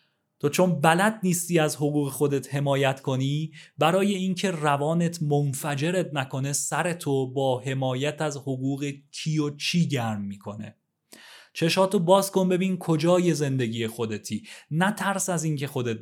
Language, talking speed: Persian, 130 wpm